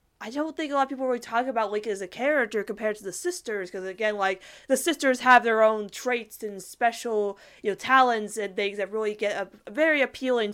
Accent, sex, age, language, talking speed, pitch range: American, female, 20-39, English, 230 wpm, 190-235 Hz